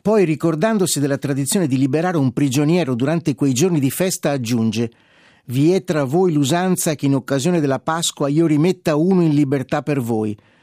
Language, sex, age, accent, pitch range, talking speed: Italian, male, 50-69, native, 130-165 Hz, 175 wpm